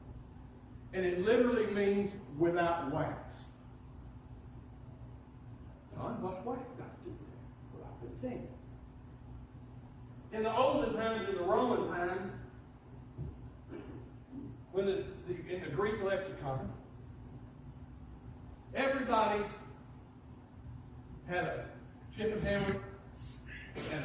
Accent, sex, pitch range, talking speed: American, male, 125-195 Hz, 85 wpm